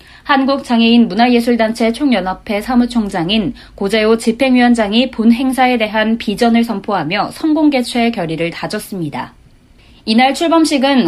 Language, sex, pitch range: Korean, female, 200-260 Hz